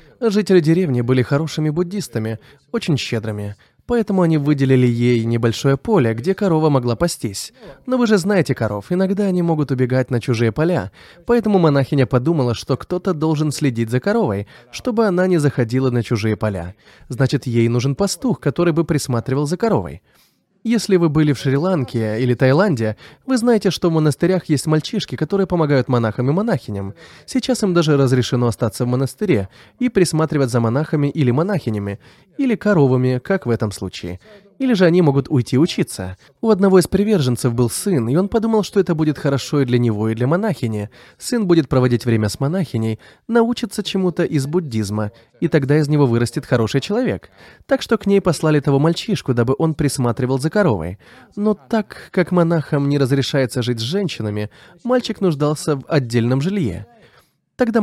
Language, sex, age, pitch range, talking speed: Russian, male, 20-39, 125-185 Hz, 165 wpm